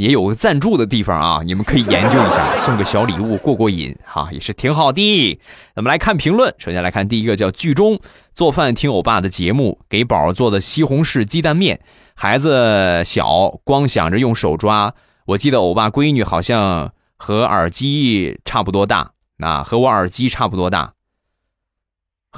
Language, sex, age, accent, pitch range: Chinese, male, 20-39, native, 90-135 Hz